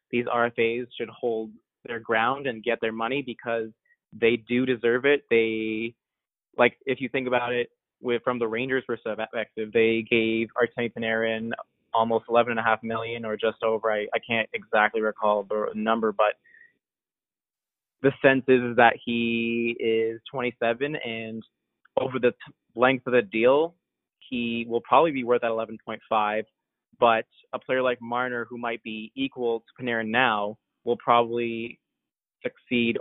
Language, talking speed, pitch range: English, 140 wpm, 110-120 Hz